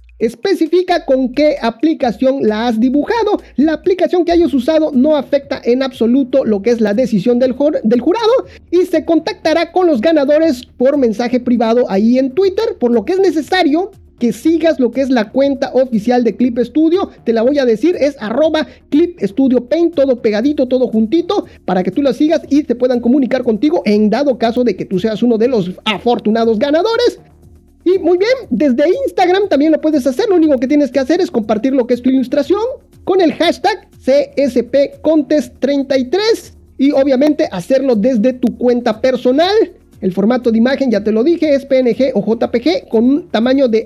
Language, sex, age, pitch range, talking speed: Spanish, male, 40-59, 240-315 Hz, 190 wpm